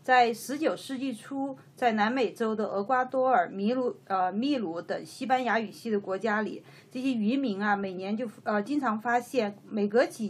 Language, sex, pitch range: Chinese, female, 210-275 Hz